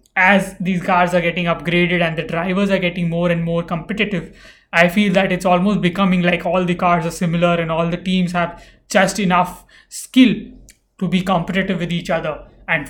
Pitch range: 170-195 Hz